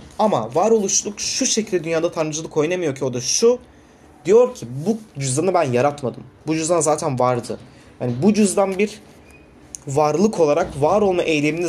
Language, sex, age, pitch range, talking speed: Turkish, male, 30-49, 135-205 Hz, 155 wpm